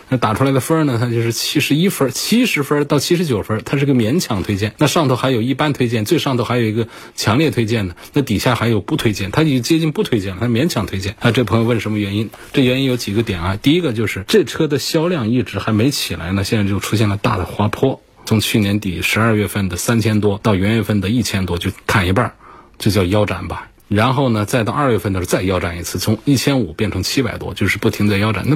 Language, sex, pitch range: Chinese, male, 105-135 Hz